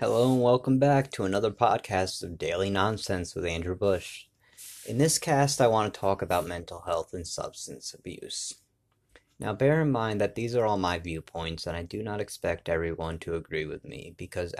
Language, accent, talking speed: English, American, 195 wpm